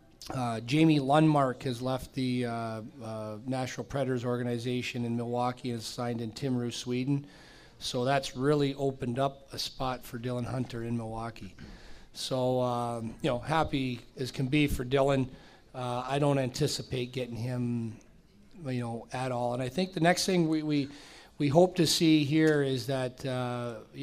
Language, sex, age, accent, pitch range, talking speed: English, male, 40-59, American, 125-140 Hz, 165 wpm